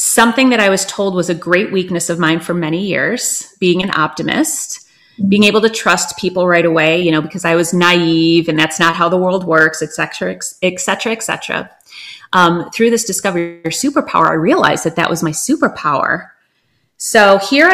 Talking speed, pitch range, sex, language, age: 200 wpm, 175-225 Hz, female, English, 30-49